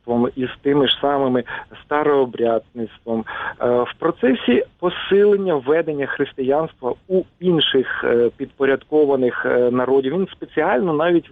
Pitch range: 125-180 Hz